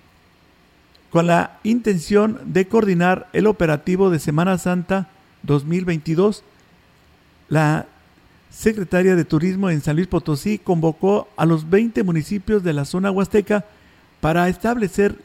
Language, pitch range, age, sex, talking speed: Spanish, 155-195 Hz, 50-69, male, 120 wpm